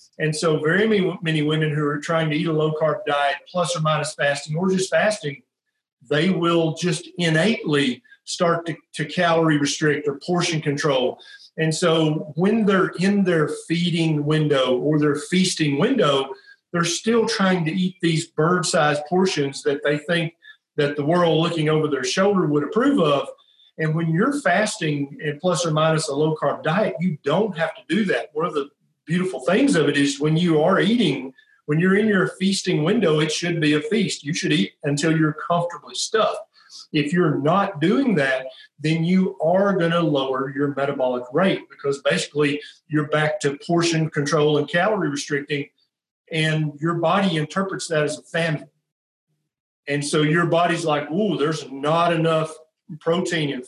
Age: 40-59